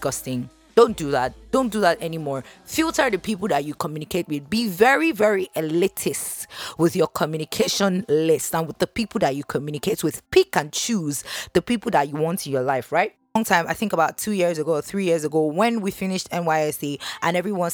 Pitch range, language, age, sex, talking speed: 150-215 Hz, English, 20-39, female, 205 wpm